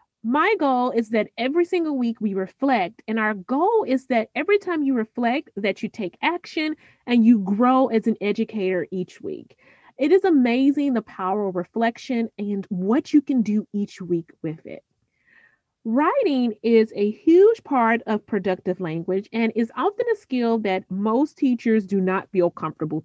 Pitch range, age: 210-300 Hz, 30-49